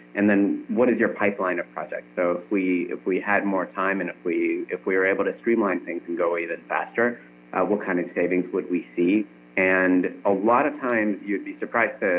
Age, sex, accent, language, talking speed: 30-49, male, American, English, 230 wpm